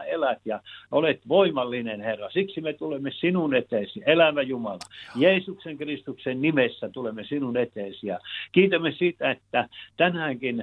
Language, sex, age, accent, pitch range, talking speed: Finnish, male, 60-79, native, 120-160 Hz, 125 wpm